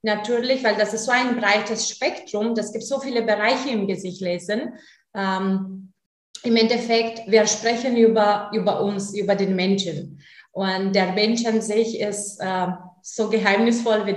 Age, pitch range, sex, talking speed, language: 20-39, 200-235 Hz, female, 155 wpm, German